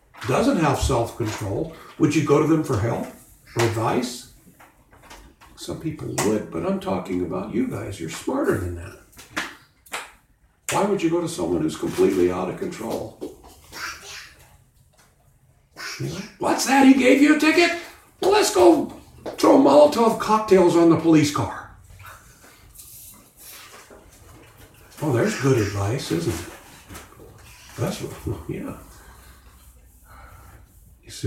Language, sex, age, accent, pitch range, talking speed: English, male, 60-79, American, 100-160 Hz, 120 wpm